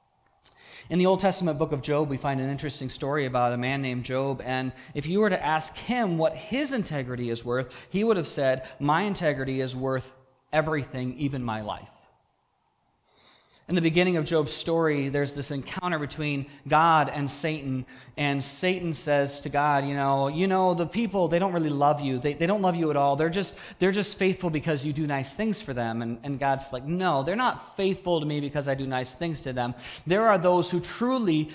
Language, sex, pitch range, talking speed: English, male, 135-185 Hz, 210 wpm